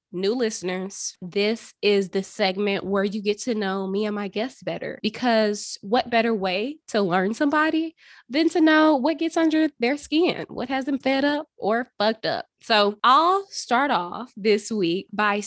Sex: female